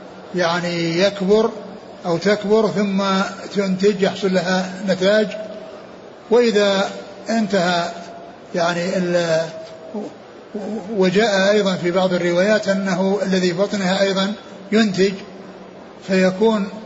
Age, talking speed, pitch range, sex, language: 60-79, 80 wpm, 180-205 Hz, male, Arabic